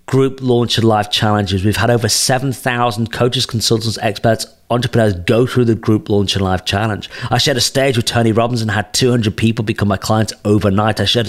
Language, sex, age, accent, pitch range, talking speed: English, male, 40-59, British, 105-125 Hz, 215 wpm